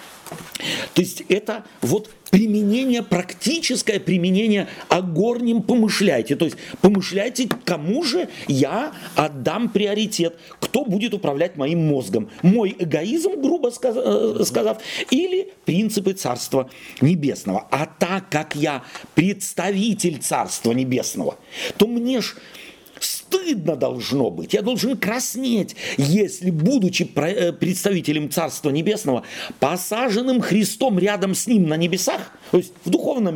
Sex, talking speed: male, 115 wpm